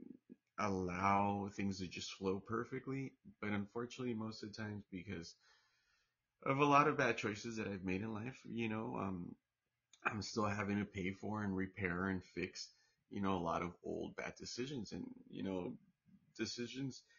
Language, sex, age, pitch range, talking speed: English, male, 30-49, 90-110 Hz, 170 wpm